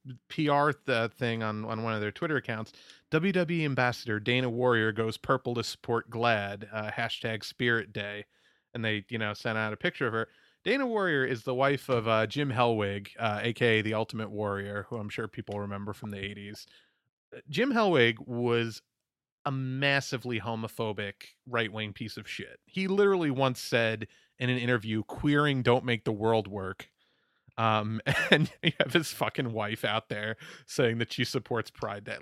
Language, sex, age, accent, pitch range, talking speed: English, male, 30-49, American, 110-145 Hz, 170 wpm